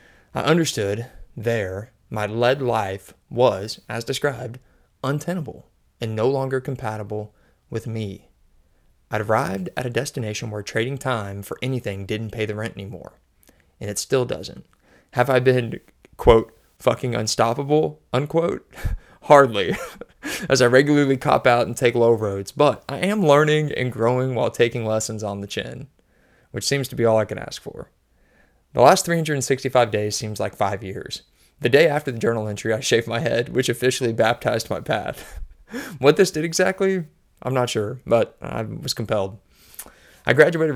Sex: male